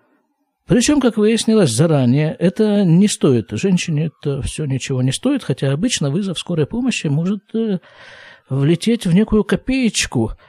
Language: Russian